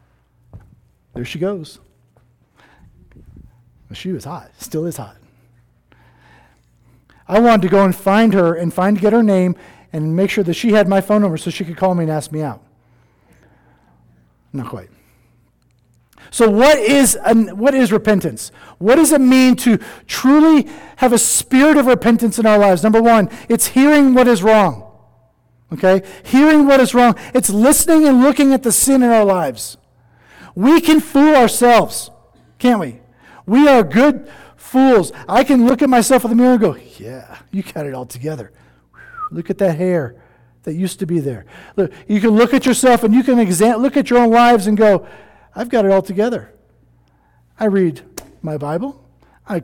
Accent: American